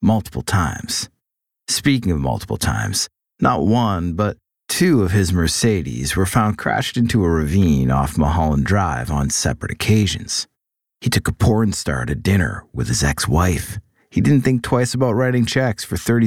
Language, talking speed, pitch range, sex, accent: English, 160 wpm, 85-115 Hz, male, American